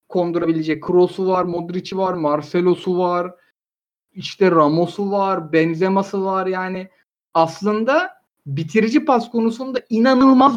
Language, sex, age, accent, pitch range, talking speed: Turkish, male, 50-69, native, 165-235 Hz, 100 wpm